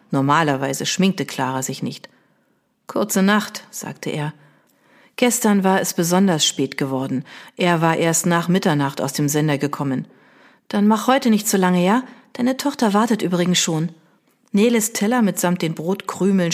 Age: 40-59